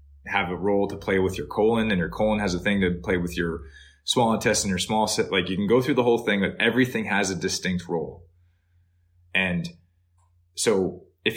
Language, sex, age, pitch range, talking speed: English, male, 20-39, 90-125 Hz, 210 wpm